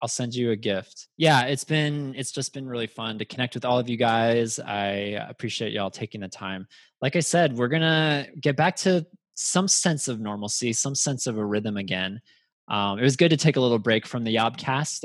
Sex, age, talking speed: male, 20-39, 225 wpm